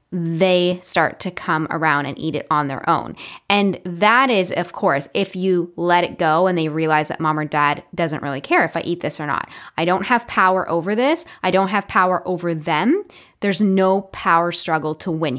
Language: English